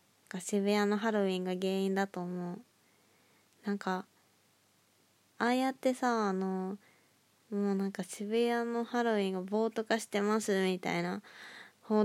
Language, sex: Japanese, female